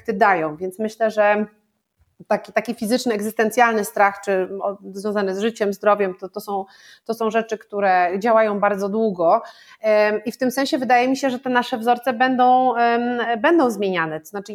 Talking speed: 165 wpm